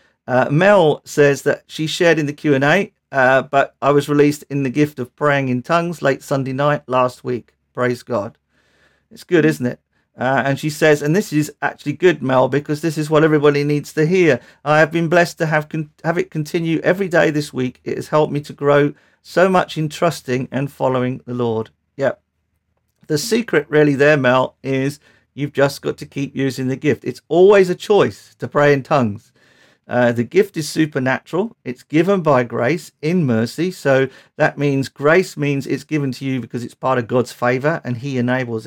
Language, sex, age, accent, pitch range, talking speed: English, male, 50-69, British, 125-155 Hz, 200 wpm